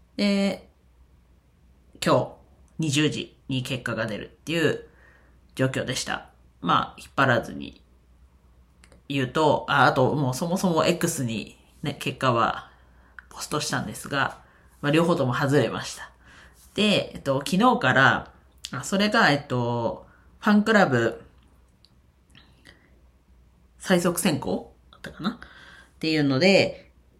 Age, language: 40-59, Japanese